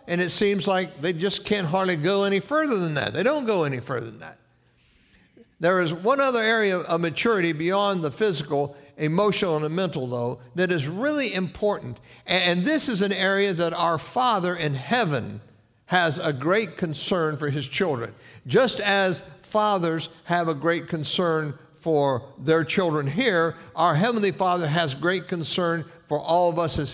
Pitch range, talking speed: 140-190 Hz, 175 wpm